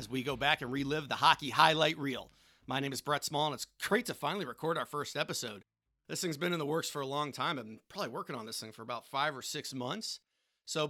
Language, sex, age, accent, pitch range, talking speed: English, male, 40-59, American, 130-175 Hz, 265 wpm